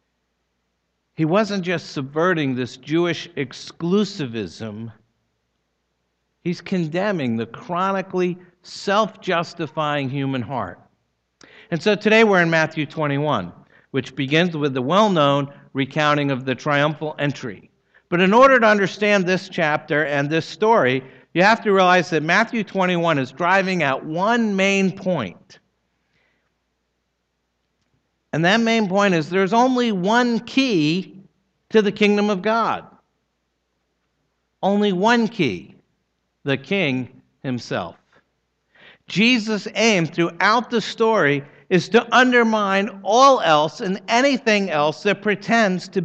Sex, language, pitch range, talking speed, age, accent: male, English, 140-205 Hz, 115 wpm, 60-79, American